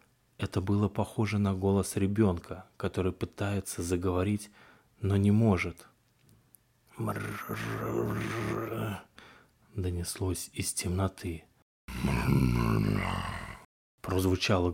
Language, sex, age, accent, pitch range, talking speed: Russian, male, 20-39, native, 90-105 Hz, 65 wpm